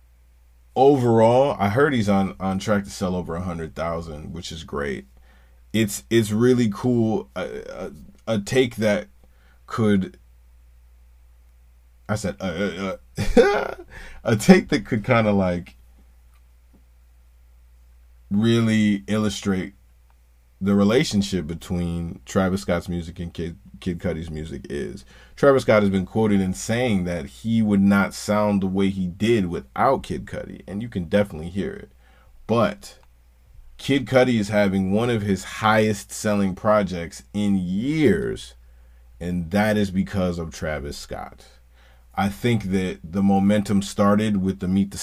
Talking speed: 140 wpm